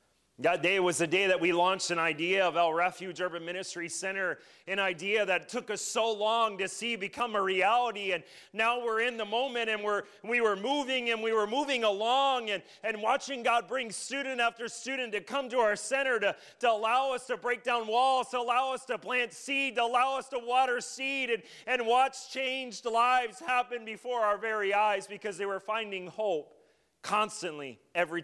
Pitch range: 190-245 Hz